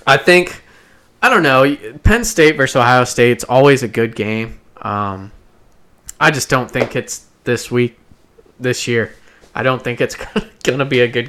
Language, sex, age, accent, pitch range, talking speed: English, male, 20-39, American, 110-135 Hz, 180 wpm